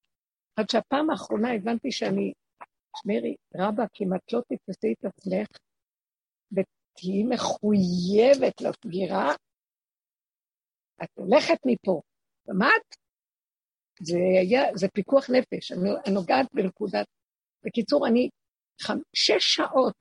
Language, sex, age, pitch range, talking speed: Hebrew, female, 60-79, 210-270 Hz, 100 wpm